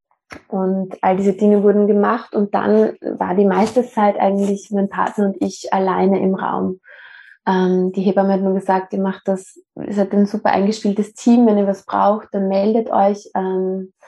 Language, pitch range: German, 195-225 Hz